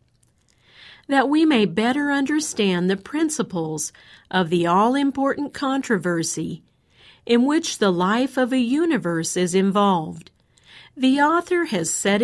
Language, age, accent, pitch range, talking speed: English, 50-69, American, 170-260 Hz, 120 wpm